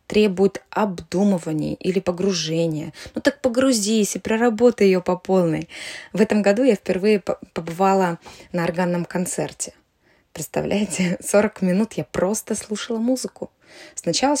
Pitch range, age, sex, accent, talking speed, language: 170-215 Hz, 20-39, female, native, 120 wpm, Russian